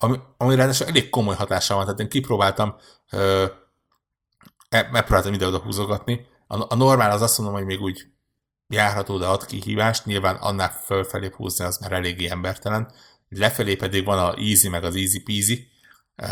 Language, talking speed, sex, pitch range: Hungarian, 175 wpm, male, 95-115 Hz